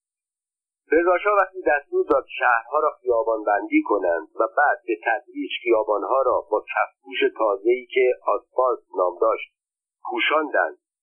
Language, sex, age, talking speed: Persian, male, 50-69, 135 wpm